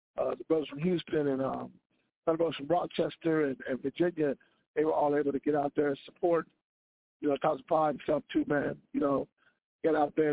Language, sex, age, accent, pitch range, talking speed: English, male, 50-69, American, 155-190 Hz, 205 wpm